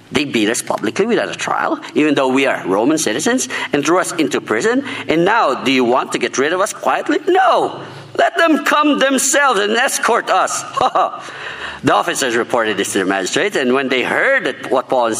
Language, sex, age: English, male, 50-69